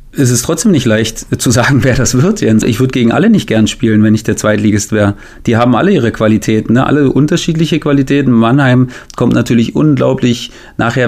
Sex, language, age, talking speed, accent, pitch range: male, German, 30-49, 195 wpm, German, 110-125 Hz